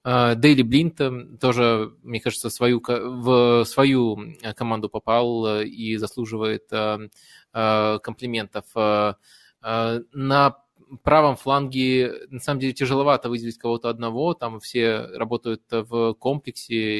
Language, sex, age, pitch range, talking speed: Russian, male, 20-39, 115-135 Hz, 95 wpm